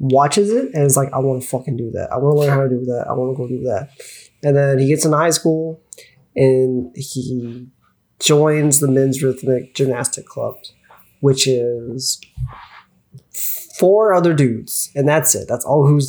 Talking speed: 190 wpm